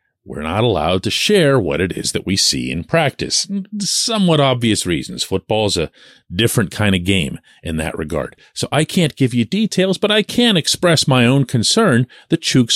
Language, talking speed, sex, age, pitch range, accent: English, 190 wpm, male, 40-59, 105-155 Hz, American